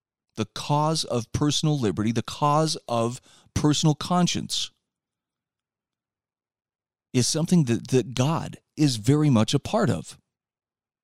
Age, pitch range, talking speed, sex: 30-49, 115-150 Hz, 115 wpm, male